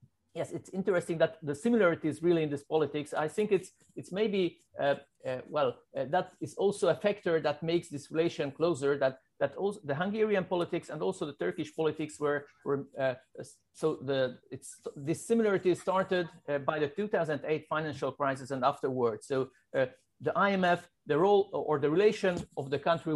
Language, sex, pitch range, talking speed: Turkish, male, 145-175 Hz, 180 wpm